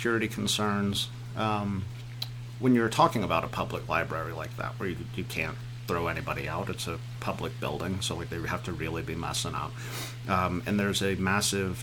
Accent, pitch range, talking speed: American, 95-120 Hz, 190 wpm